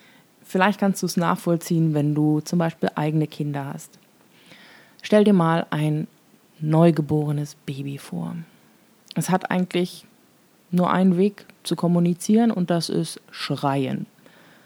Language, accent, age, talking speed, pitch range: German, German, 20-39, 125 wpm, 155-190 Hz